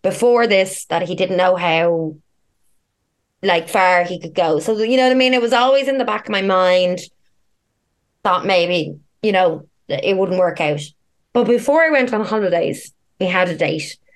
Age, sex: 20-39, female